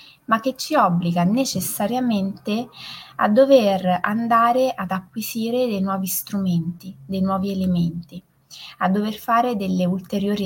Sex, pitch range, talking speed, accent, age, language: female, 170-205 Hz, 120 wpm, native, 20-39, Italian